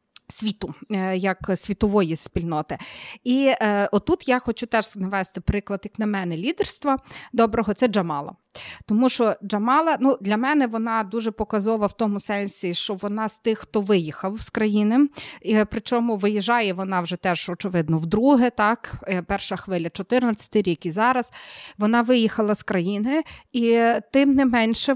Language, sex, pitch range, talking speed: Ukrainian, female, 200-230 Hz, 150 wpm